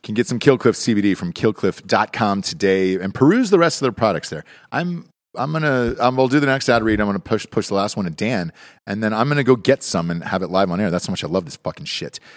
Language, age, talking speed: English, 40-59, 270 wpm